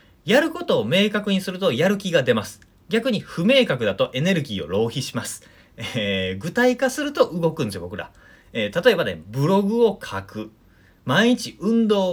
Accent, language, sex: native, Japanese, male